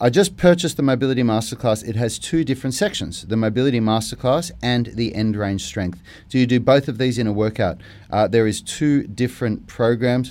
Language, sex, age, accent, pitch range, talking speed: English, male, 30-49, Australian, 105-130 Hz, 200 wpm